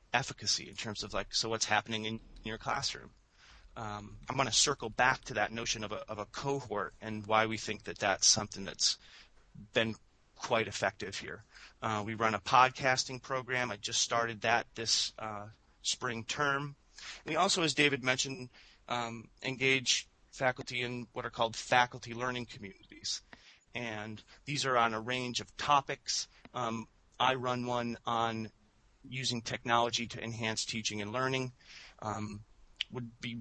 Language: English